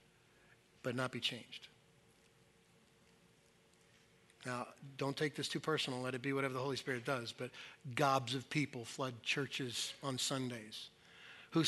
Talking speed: 140 wpm